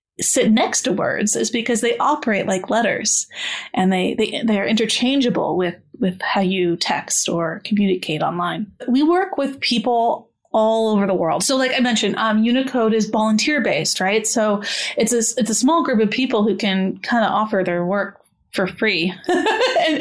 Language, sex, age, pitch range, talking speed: English, female, 30-49, 200-245 Hz, 185 wpm